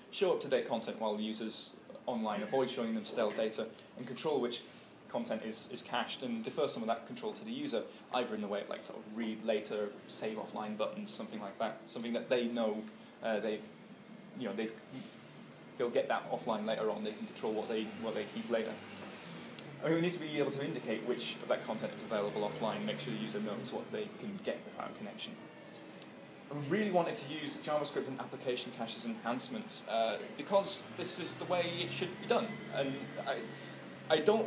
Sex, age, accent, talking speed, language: male, 20-39, British, 210 wpm, English